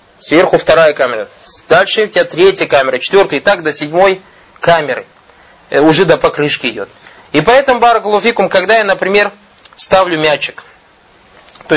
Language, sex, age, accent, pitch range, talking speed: Russian, male, 20-39, native, 140-205 Hz, 140 wpm